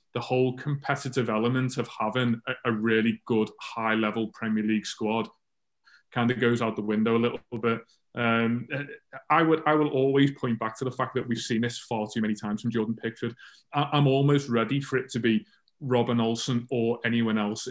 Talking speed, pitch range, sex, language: 190 wpm, 115-130 Hz, male, English